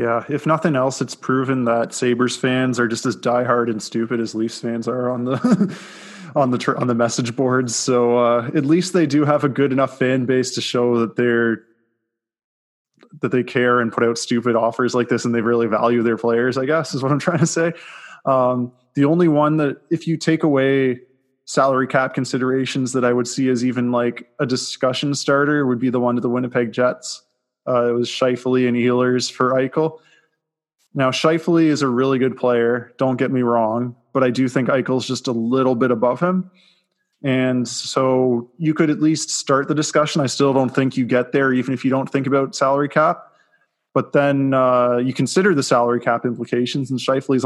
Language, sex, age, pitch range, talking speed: English, male, 20-39, 120-140 Hz, 205 wpm